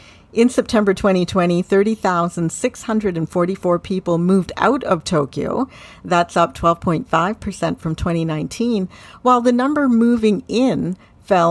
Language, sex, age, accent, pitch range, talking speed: English, female, 50-69, American, 170-235 Hz, 105 wpm